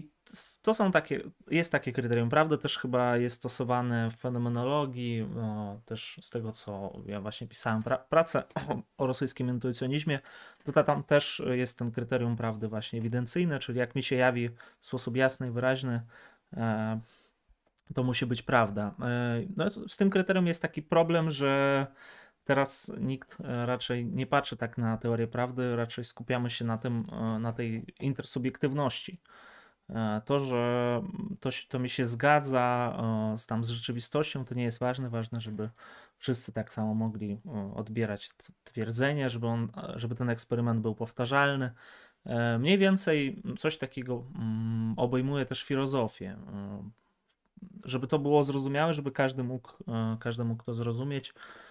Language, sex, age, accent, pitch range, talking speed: Polish, male, 20-39, native, 115-140 Hz, 140 wpm